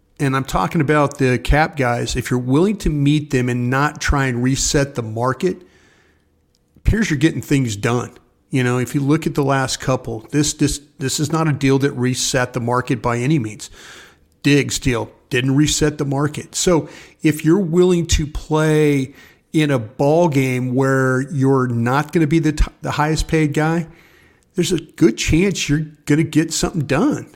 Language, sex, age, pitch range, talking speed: English, male, 40-59, 130-155 Hz, 190 wpm